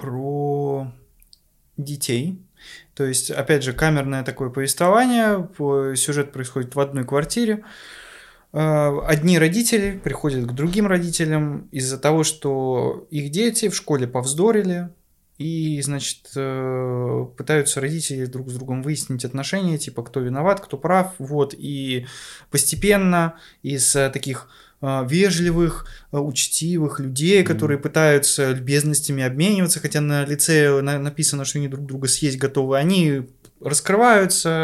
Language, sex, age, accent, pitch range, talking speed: Russian, male, 20-39, native, 130-160 Hz, 115 wpm